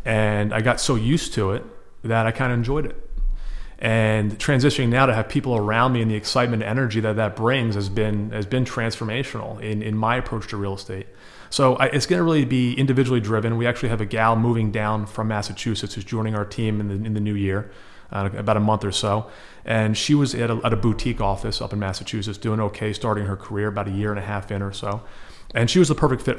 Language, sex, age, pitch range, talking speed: English, male, 30-49, 110-135 Hz, 245 wpm